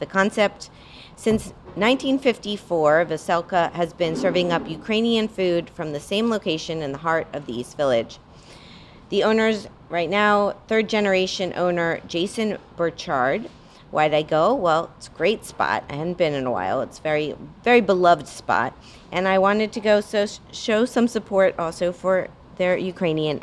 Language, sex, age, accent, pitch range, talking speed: English, female, 30-49, American, 145-195 Hz, 160 wpm